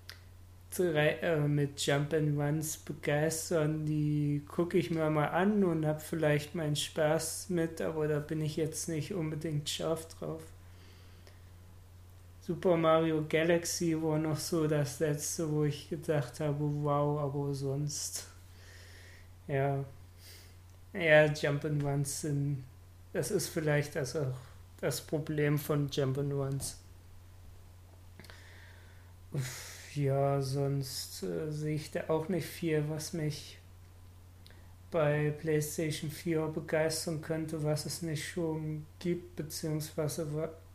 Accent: German